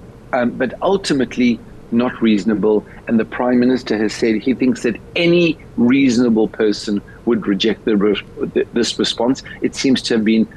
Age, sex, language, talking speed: 50-69, male, English, 160 wpm